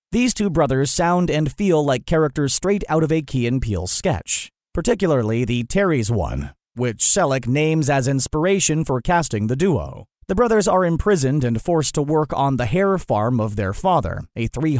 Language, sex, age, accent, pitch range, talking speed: English, male, 30-49, American, 125-165 Hz, 185 wpm